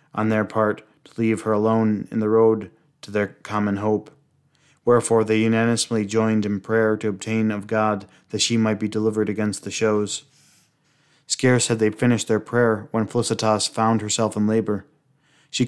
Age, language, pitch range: 20-39, English, 105-120 Hz